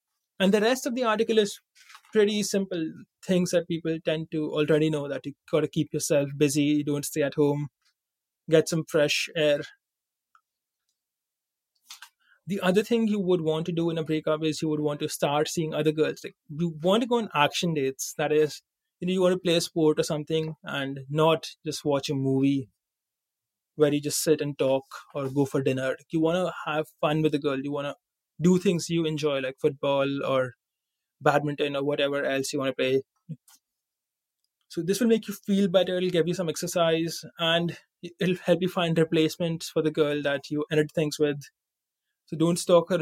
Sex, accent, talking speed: male, Indian, 200 wpm